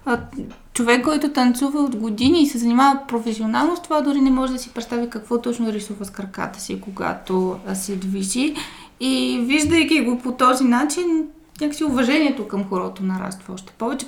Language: Bulgarian